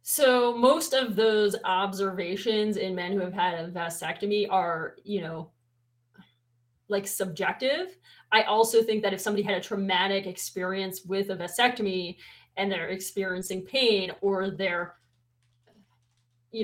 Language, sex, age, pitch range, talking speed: English, female, 30-49, 185-225 Hz, 135 wpm